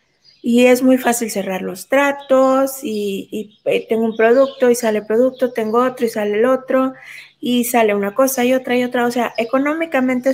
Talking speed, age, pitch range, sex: 190 wpm, 20-39, 210-260 Hz, female